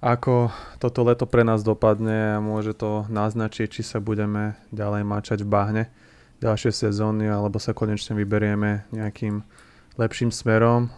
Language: Slovak